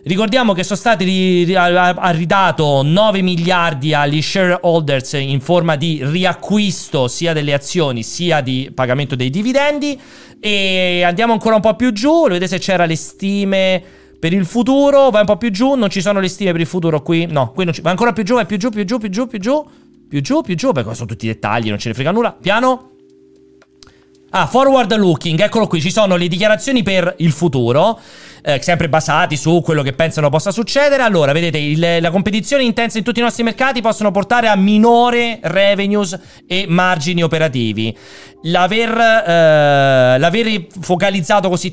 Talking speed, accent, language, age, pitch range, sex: 185 wpm, native, Italian, 40-59, 160-210 Hz, male